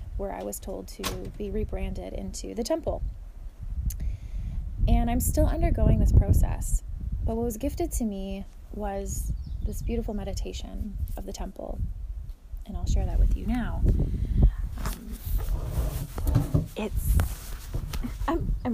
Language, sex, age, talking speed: English, female, 20-39, 125 wpm